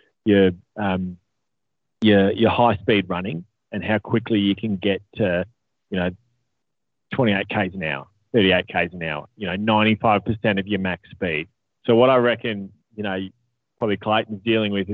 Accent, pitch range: Australian, 100-120 Hz